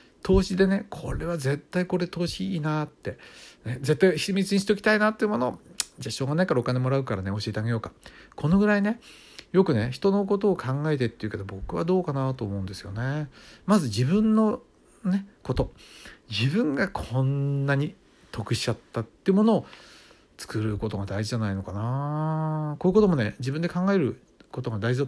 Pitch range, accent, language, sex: 105-160 Hz, native, Japanese, male